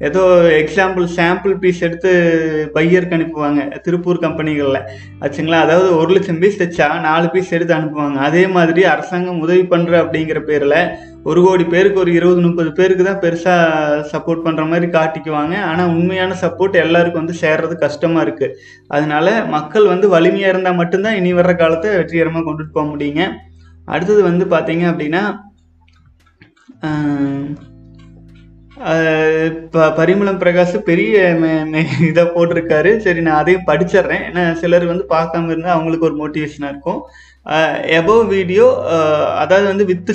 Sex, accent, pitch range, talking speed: male, native, 155-180 Hz, 130 wpm